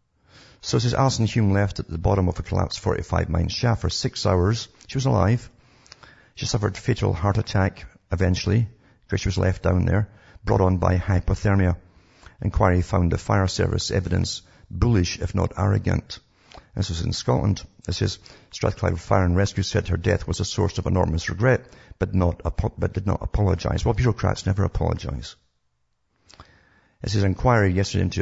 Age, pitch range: 50-69, 90-110 Hz